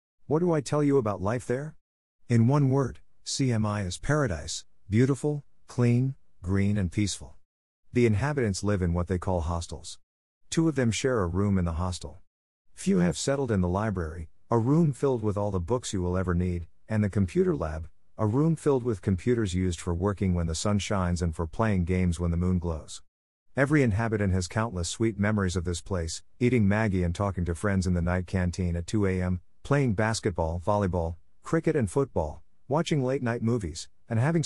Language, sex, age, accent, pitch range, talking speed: English, male, 50-69, American, 90-120 Hz, 190 wpm